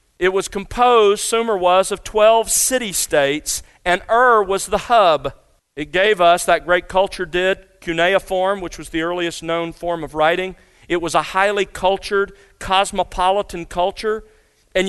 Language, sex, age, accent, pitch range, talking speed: English, male, 40-59, American, 155-210 Hz, 150 wpm